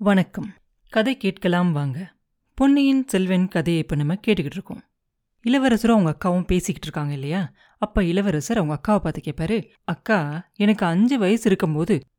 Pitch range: 165-220 Hz